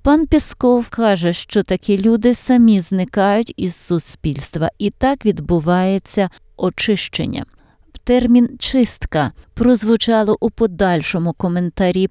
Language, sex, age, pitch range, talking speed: Ukrainian, female, 20-39, 165-215 Hz, 100 wpm